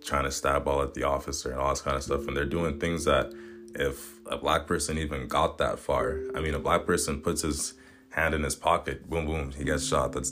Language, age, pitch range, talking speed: English, 20-39, 70-95 Hz, 250 wpm